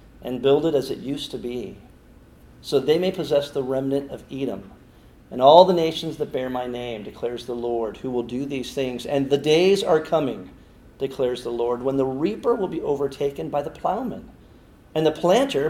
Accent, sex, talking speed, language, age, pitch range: American, male, 200 wpm, English, 40-59, 115-140 Hz